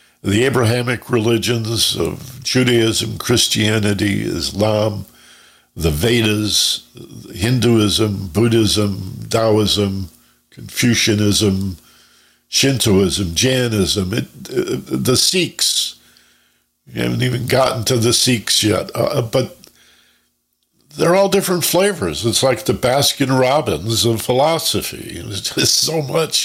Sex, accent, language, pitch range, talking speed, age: male, American, English, 90-125 Hz, 95 wpm, 60-79